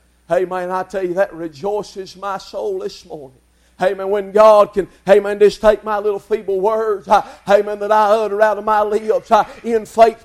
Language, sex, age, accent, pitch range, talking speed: English, male, 50-69, American, 185-230 Hz, 180 wpm